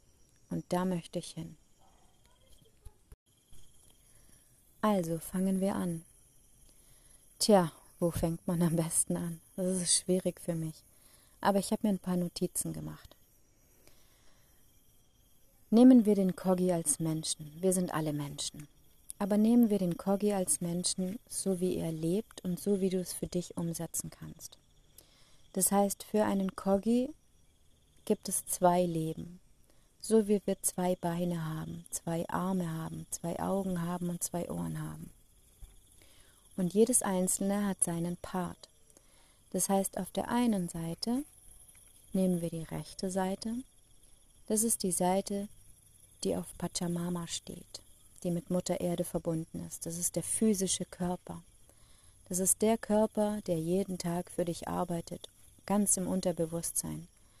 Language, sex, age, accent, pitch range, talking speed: German, female, 30-49, German, 160-195 Hz, 140 wpm